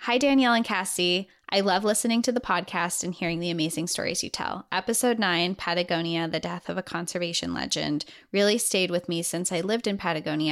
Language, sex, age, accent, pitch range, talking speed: English, female, 20-39, American, 170-215 Hz, 200 wpm